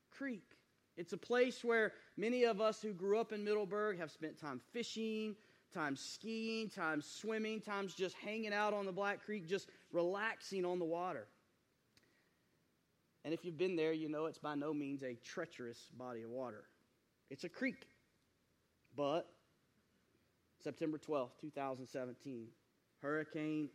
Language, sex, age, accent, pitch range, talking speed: English, male, 30-49, American, 145-190 Hz, 145 wpm